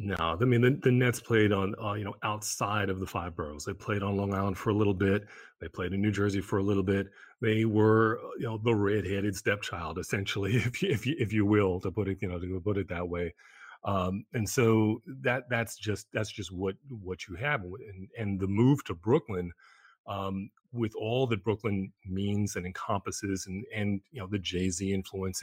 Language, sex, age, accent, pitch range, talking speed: English, male, 30-49, American, 95-115 Hz, 220 wpm